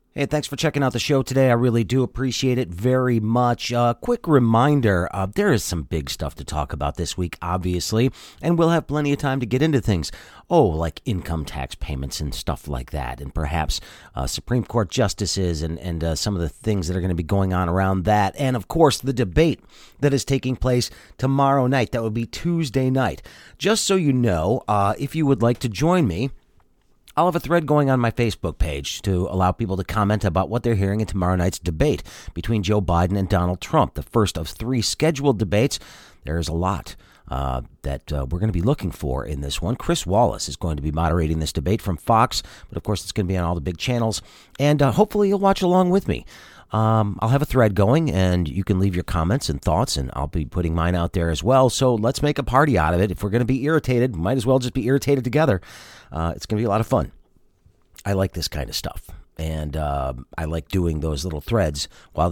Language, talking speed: English, 240 wpm